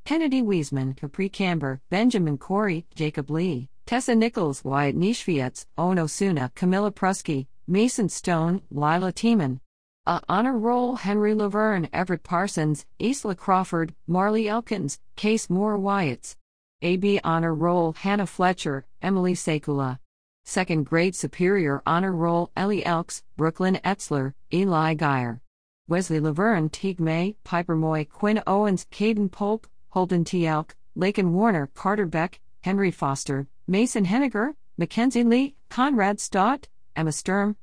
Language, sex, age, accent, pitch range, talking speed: English, female, 50-69, American, 155-205 Hz, 130 wpm